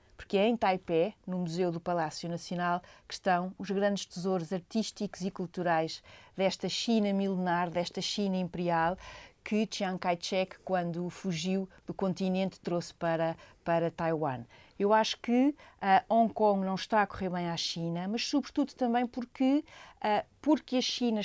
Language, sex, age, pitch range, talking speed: Portuguese, female, 40-59, 180-220 Hz, 155 wpm